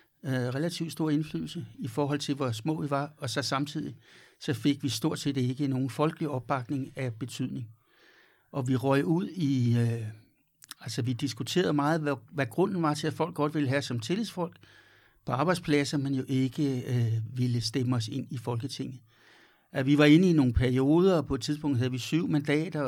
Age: 60-79